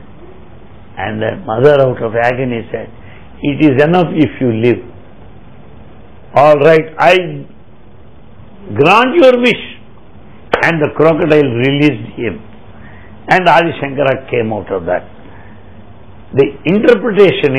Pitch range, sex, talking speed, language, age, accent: 110-180 Hz, male, 115 wpm, English, 60-79, Indian